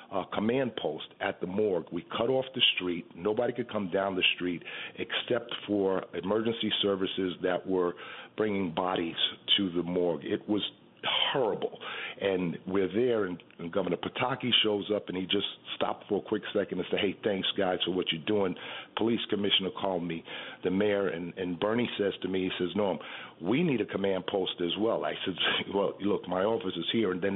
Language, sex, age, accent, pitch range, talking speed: English, male, 50-69, American, 90-105 Hz, 195 wpm